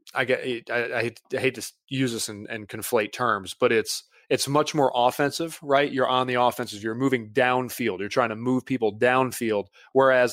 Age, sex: 20-39, male